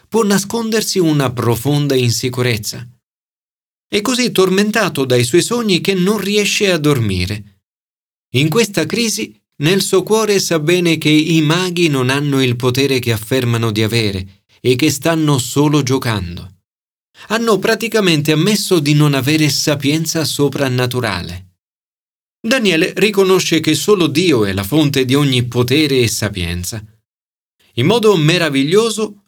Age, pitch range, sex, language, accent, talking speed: 40-59, 110-175 Hz, male, Italian, native, 130 wpm